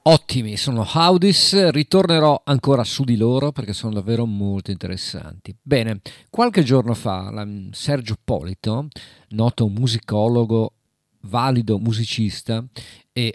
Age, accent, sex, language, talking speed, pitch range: 50-69, native, male, Italian, 110 wpm, 105-140 Hz